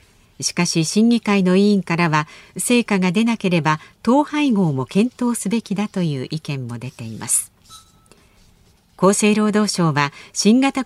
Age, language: 50-69, Japanese